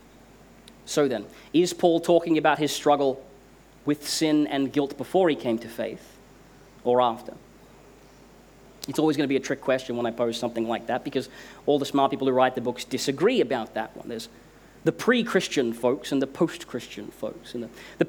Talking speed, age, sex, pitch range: 180 wpm, 30-49, male, 135-185 Hz